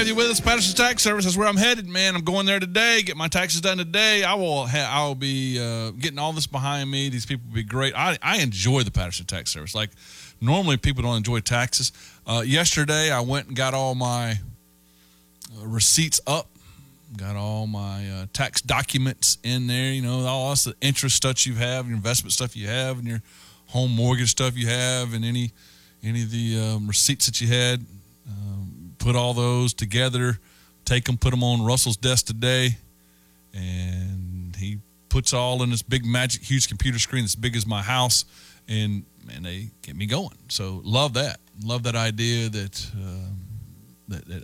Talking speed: 195 wpm